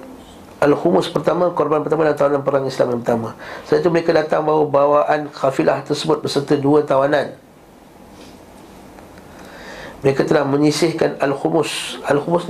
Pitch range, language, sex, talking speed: 135-165 Hz, Malay, male, 130 wpm